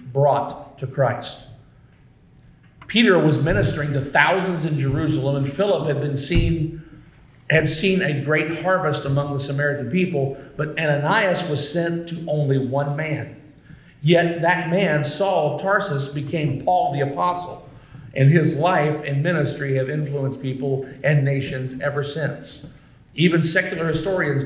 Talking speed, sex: 140 wpm, male